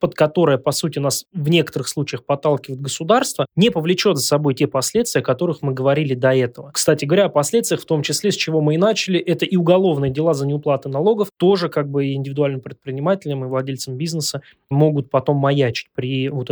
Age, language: 20-39, Russian